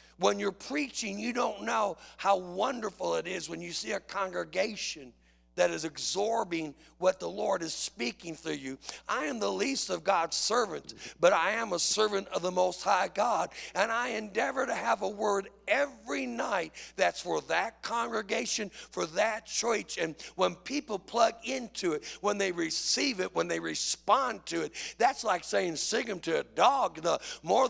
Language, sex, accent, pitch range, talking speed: English, male, American, 170-240 Hz, 180 wpm